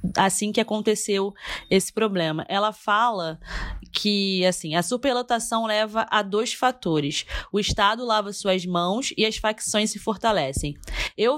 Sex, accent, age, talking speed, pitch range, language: female, Brazilian, 20-39, 135 wpm, 200-235 Hz, English